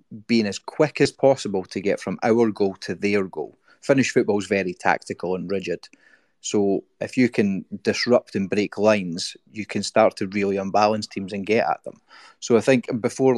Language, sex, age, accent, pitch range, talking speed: English, male, 30-49, British, 100-115 Hz, 195 wpm